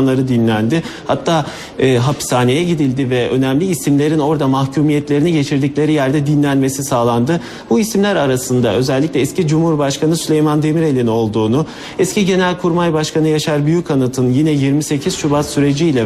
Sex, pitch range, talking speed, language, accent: male, 125-155 Hz, 120 wpm, Turkish, native